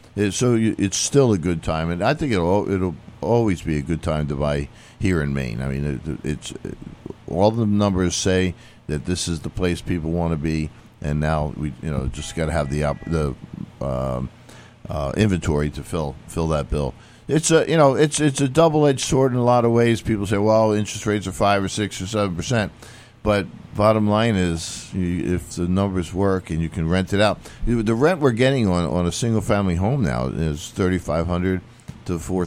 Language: English